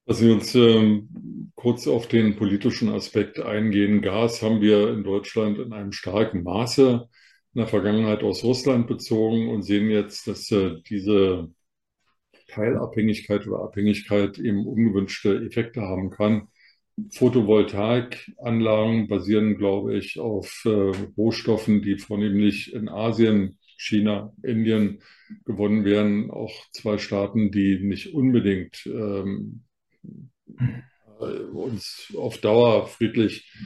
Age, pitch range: 50-69, 100-115 Hz